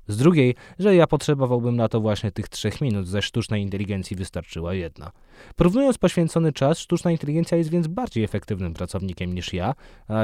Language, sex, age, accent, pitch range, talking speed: Polish, male, 20-39, native, 95-125 Hz, 170 wpm